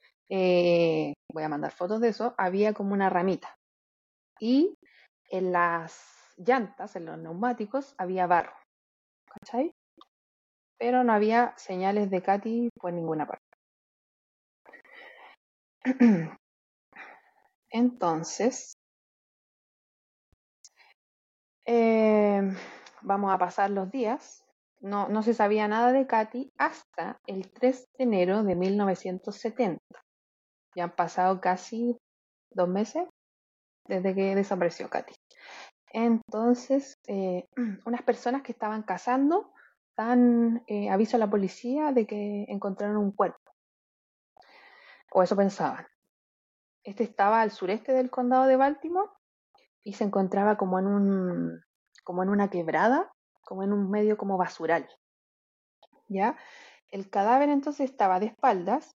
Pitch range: 185-245 Hz